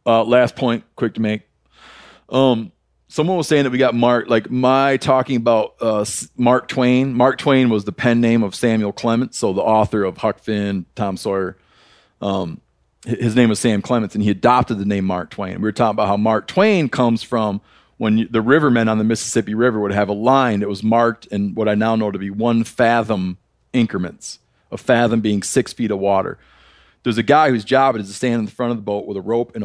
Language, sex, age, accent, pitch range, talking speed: English, male, 40-59, American, 105-125 Hz, 225 wpm